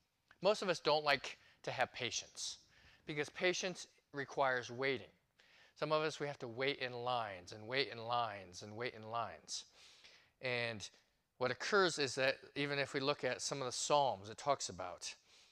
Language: English